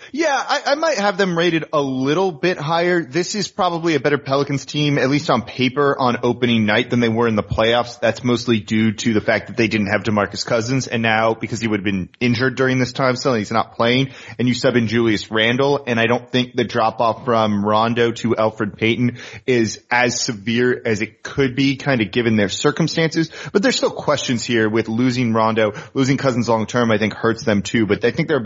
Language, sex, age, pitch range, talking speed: English, male, 30-49, 110-135 Hz, 230 wpm